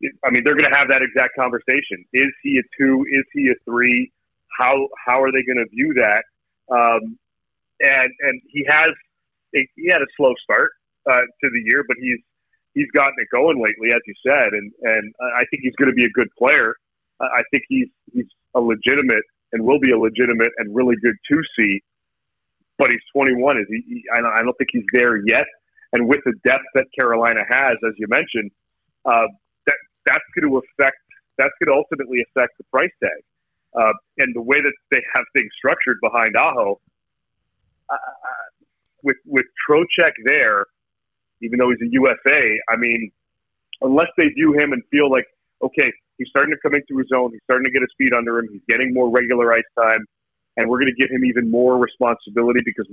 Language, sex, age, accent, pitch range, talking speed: English, male, 30-49, American, 115-135 Hz, 200 wpm